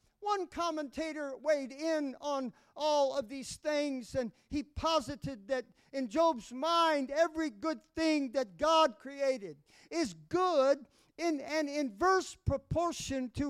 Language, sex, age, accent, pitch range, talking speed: English, male, 50-69, American, 245-305 Hz, 130 wpm